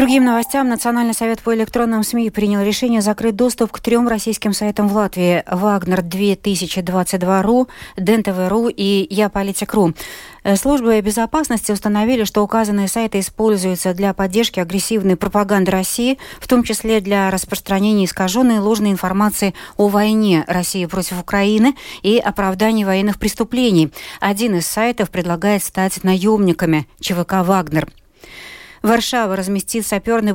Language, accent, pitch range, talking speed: Russian, native, 185-225 Hz, 125 wpm